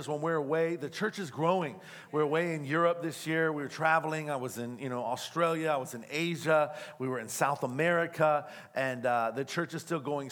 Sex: male